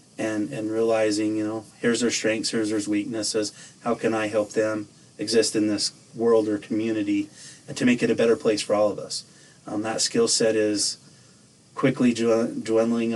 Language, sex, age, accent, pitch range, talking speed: English, male, 30-49, American, 110-125 Hz, 185 wpm